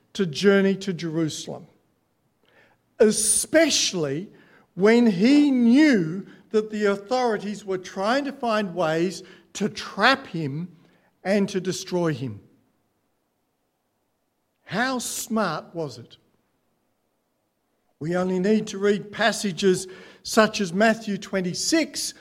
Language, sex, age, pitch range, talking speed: English, male, 60-79, 180-230 Hz, 100 wpm